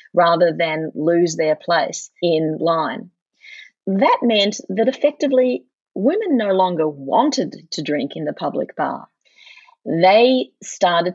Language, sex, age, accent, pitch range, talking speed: English, female, 30-49, Australian, 170-220 Hz, 125 wpm